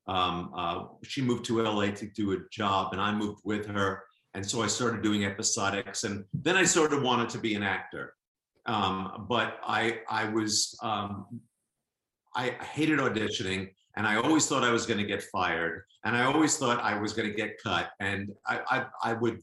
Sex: male